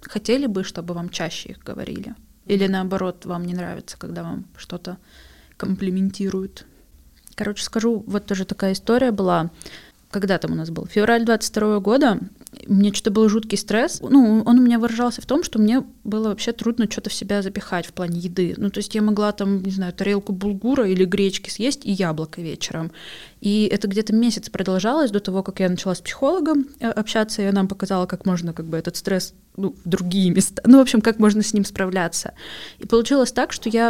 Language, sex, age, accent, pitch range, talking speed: Russian, female, 20-39, native, 190-225 Hz, 195 wpm